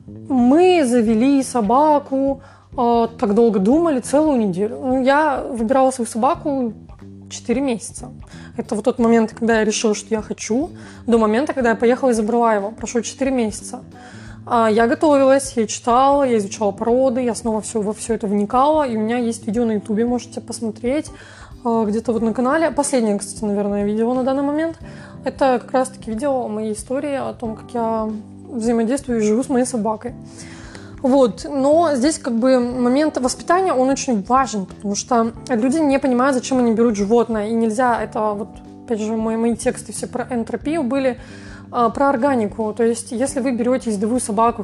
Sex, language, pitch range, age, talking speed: female, Russian, 220-265 Hz, 20-39, 180 wpm